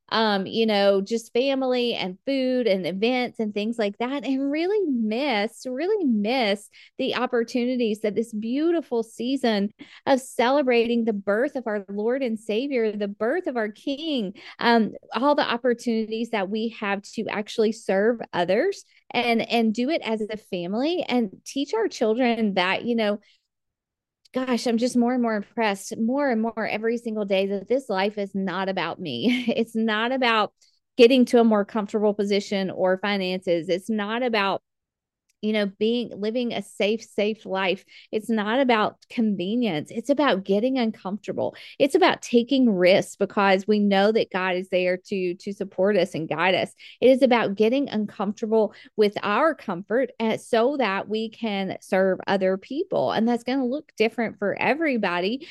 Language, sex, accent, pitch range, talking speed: English, female, American, 205-250 Hz, 170 wpm